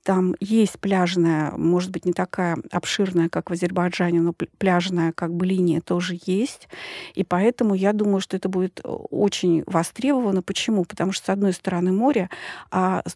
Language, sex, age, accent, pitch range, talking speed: Russian, female, 40-59, native, 175-205 Hz, 165 wpm